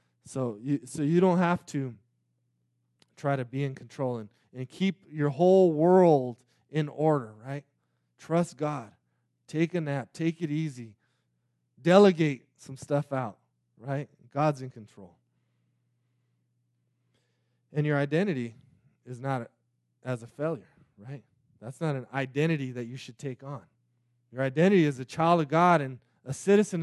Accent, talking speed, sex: American, 150 wpm, male